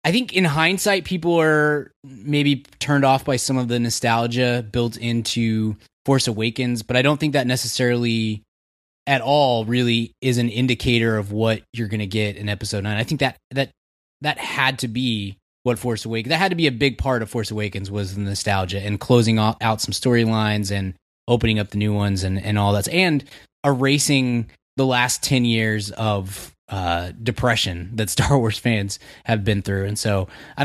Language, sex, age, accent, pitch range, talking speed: English, male, 20-39, American, 105-130 Hz, 190 wpm